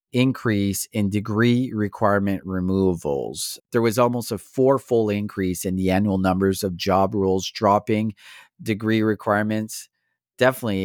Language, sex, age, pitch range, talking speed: English, male, 40-59, 95-125 Hz, 120 wpm